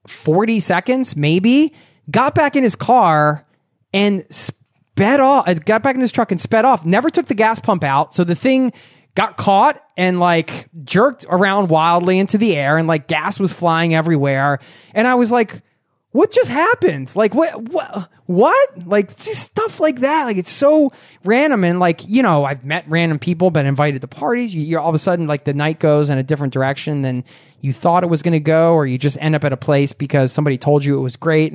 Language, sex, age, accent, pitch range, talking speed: English, male, 20-39, American, 145-185 Hz, 215 wpm